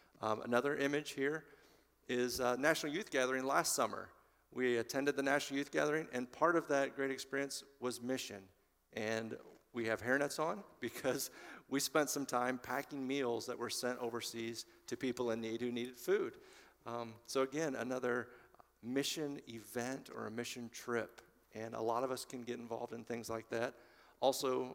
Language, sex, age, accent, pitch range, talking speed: English, male, 50-69, American, 115-135 Hz, 170 wpm